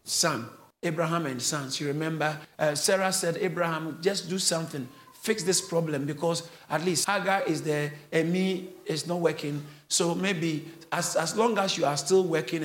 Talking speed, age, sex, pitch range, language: 175 wpm, 50-69, male, 160-195 Hz, English